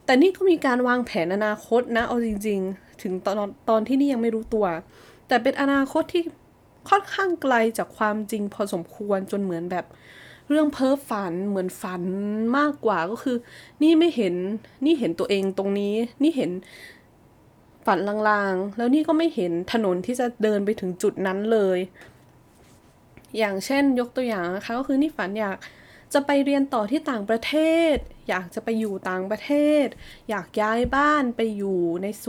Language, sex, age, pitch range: Thai, female, 20-39, 205-270 Hz